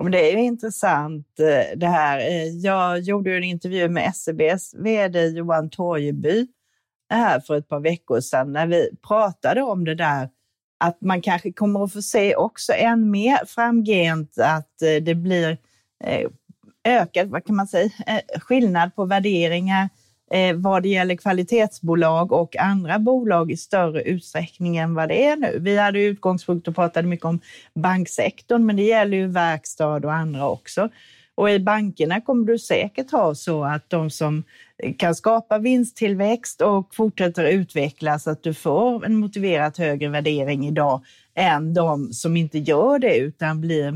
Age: 30-49